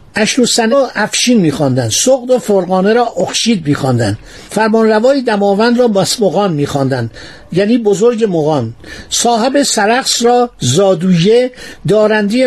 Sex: male